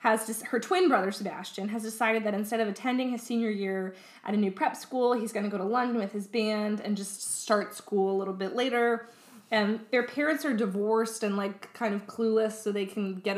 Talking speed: 230 wpm